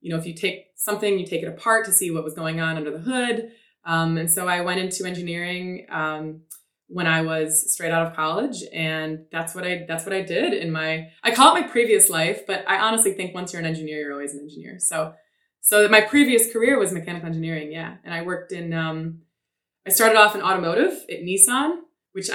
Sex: female